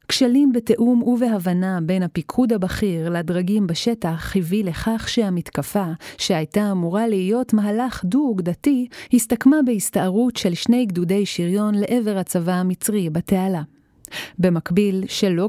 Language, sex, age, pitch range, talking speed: Hebrew, female, 30-49, 180-235 Hz, 110 wpm